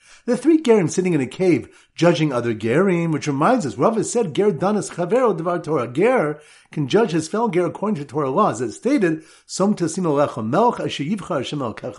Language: English